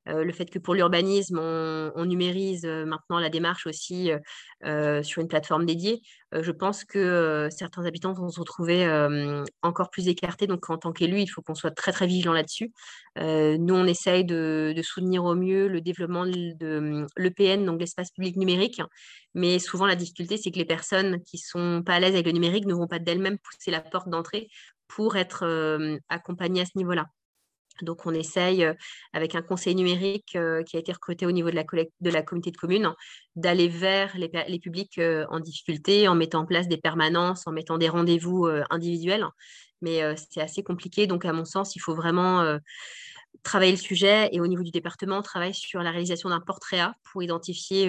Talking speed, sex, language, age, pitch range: 190 wpm, female, French, 20-39, 165-185 Hz